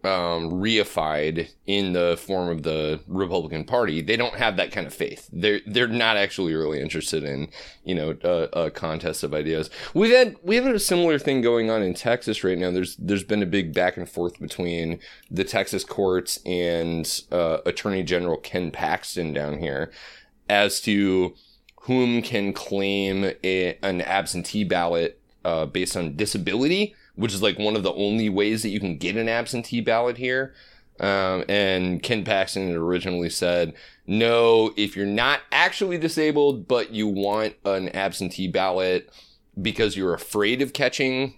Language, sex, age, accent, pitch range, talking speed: English, male, 30-49, American, 90-115 Hz, 165 wpm